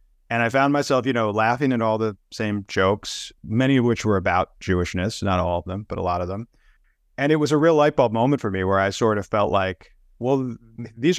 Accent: American